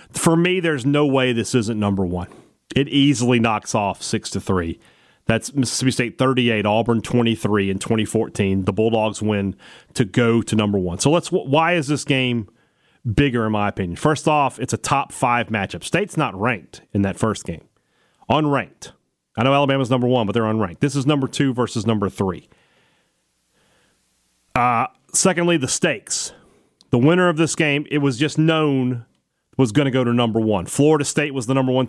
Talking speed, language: 180 wpm, English